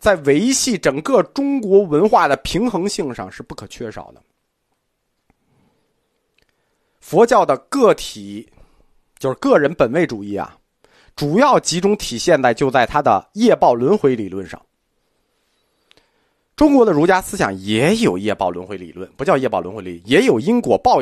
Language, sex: Chinese, male